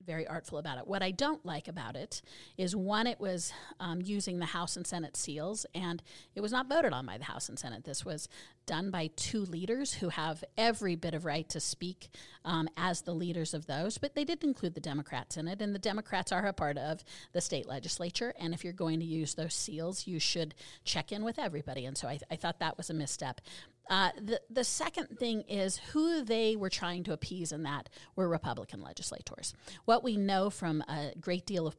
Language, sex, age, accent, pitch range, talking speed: English, female, 40-59, American, 155-190 Hz, 225 wpm